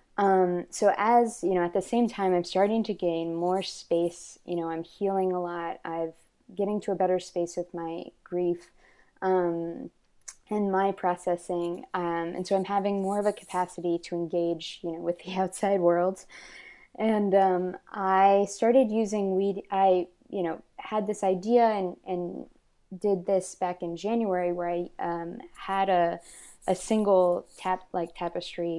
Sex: female